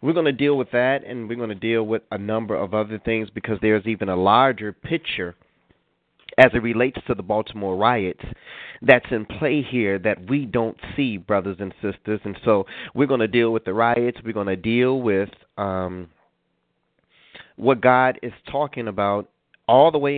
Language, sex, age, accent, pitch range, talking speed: English, male, 30-49, American, 105-125 Hz, 190 wpm